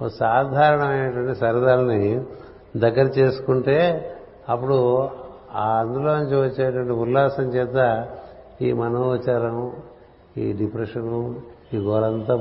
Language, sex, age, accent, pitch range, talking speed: Telugu, male, 60-79, native, 115-130 Hz, 85 wpm